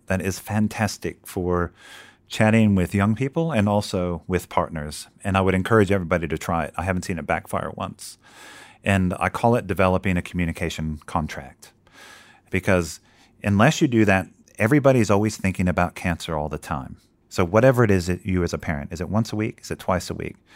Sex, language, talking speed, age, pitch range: male, English, 195 wpm, 30-49, 85-105 Hz